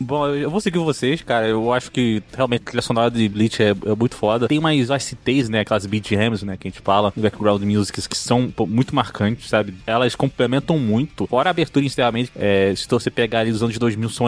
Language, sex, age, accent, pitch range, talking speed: Portuguese, male, 20-39, Brazilian, 115-165 Hz, 225 wpm